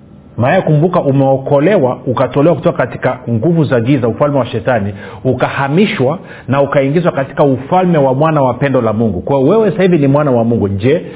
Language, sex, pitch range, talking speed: Swahili, male, 130-175 Hz, 175 wpm